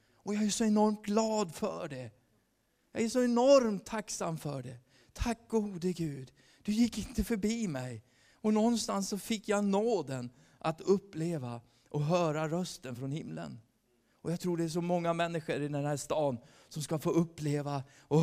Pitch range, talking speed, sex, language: 120-175 Hz, 175 wpm, male, Swedish